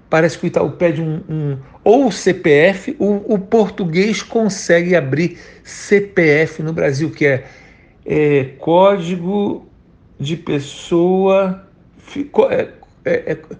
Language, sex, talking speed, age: Portuguese, male, 95 wpm, 60-79